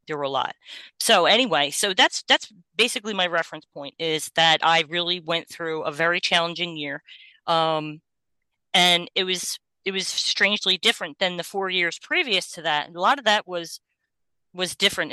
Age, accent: 30-49, American